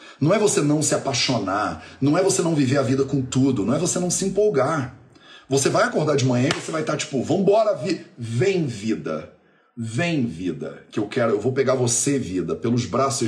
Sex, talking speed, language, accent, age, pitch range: male, 215 wpm, Portuguese, Brazilian, 40-59, 125-185 Hz